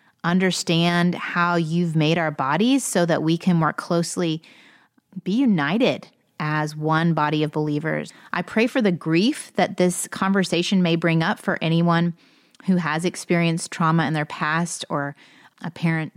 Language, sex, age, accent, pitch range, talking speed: English, female, 30-49, American, 165-205 Hz, 155 wpm